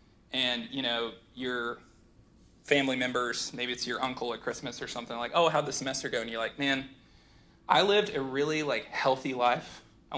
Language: English